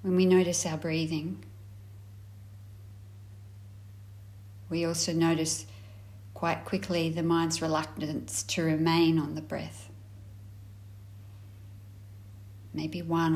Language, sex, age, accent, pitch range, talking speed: English, female, 30-49, Australian, 100-155 Hz, 90 wpm